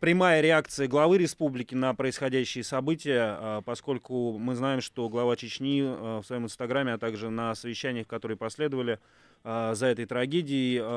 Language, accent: Russian, native